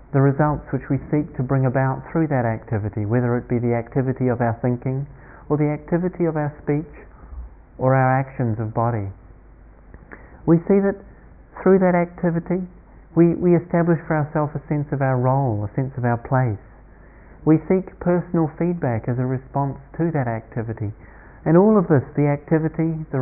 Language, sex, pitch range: English, male, 125-155 Hz